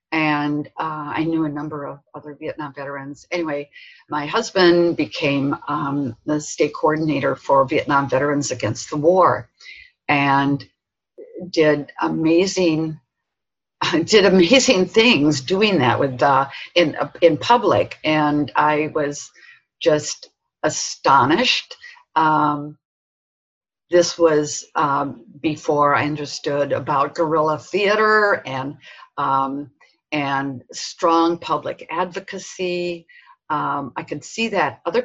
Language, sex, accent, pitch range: English, female, American, 145-195 Hz